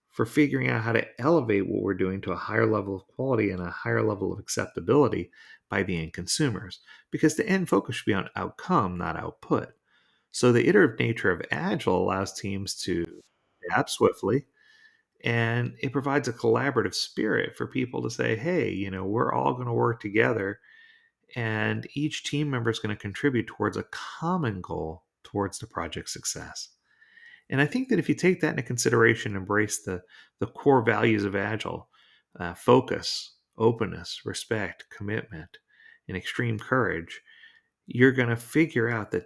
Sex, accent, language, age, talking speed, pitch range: male, American, English, 40-59, 175 wpm, 95-145 Hz